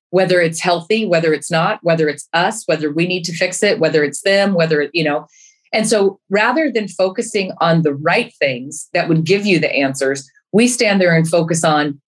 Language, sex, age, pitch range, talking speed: English, female, 30-49, 160-200 Hz, 215 wpm